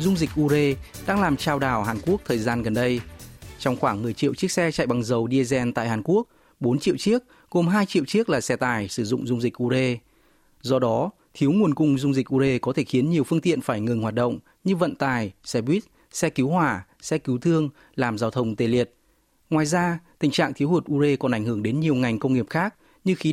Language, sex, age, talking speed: Vietnamese, male, 20-39, 240 wpm